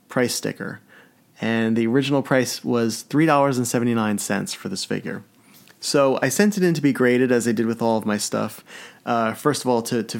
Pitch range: 115-140 Hz